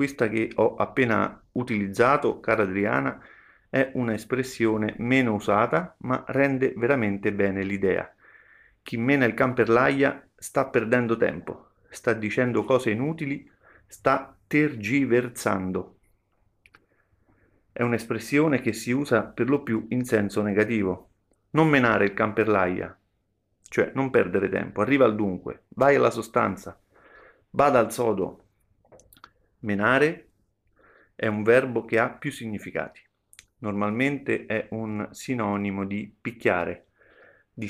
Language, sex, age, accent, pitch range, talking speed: Italian, male, 40-59, native, 100-125 Hz, 115 wpm